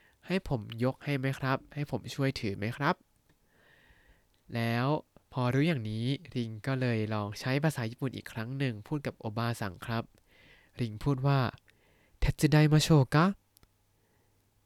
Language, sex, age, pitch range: Thai, male, 20-39, 110-150 Hz